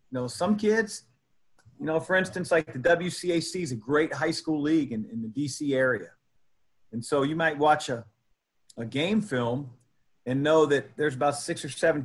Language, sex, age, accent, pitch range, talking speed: English, male, 40-59, American, 115-155 Hz, 195 wpm